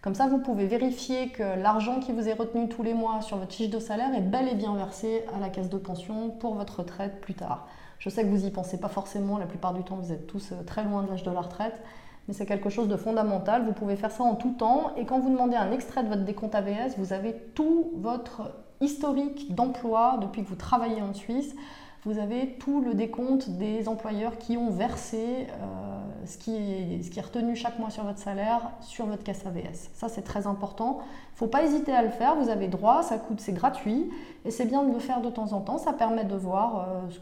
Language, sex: French, female